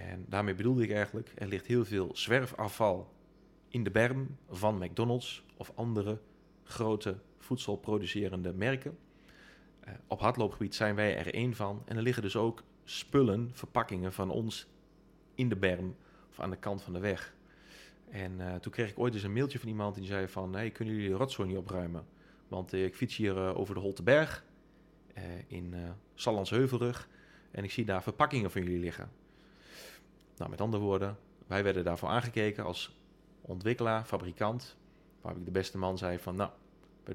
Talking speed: 180 wpm